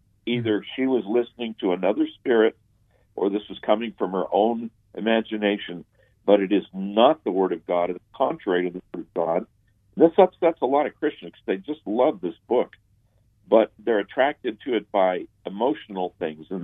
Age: 60-79